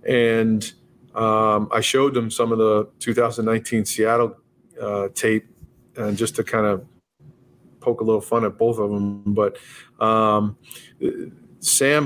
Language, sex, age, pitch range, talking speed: English, male, 40-59, 105-120 Hz, 140 wpm